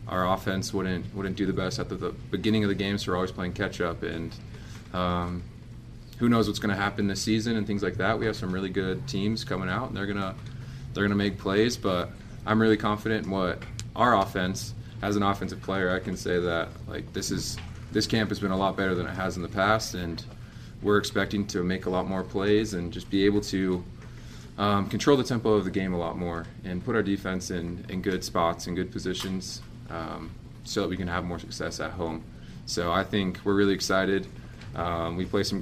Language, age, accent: English, 20-39, American